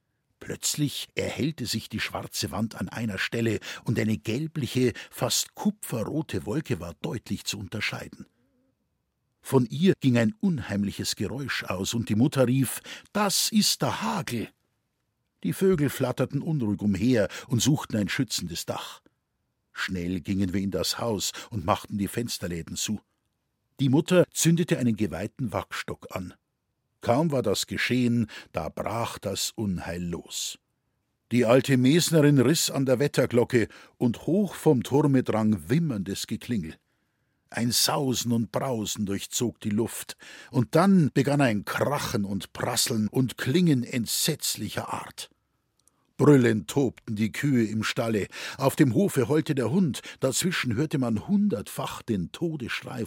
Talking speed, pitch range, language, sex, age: 135 wpm, 105-145 Hz, German, male, 50-69